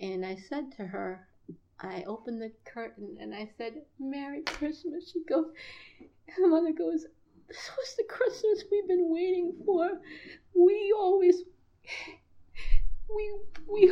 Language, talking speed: English, 140 wpm